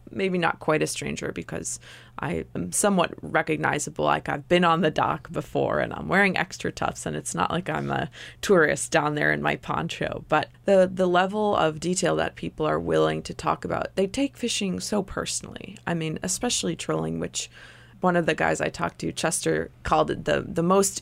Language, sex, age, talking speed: English, female, 20-39, 200 wpm